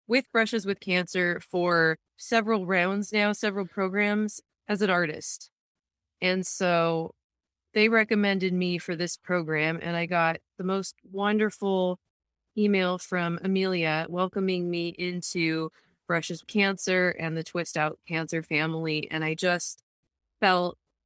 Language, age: English, 20-39